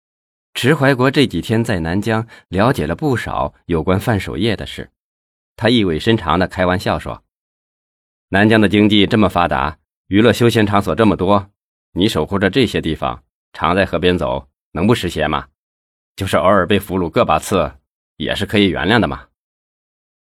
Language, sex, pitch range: Chinese, male, 80-110 Hz